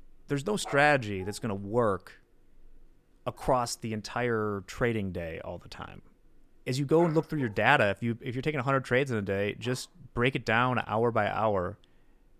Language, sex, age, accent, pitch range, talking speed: English, male, 30-49, American, 100-130 Hz, 200 wpm